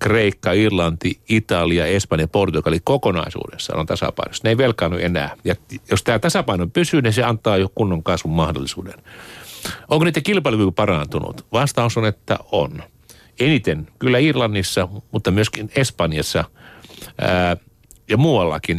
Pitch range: 90-125 Hz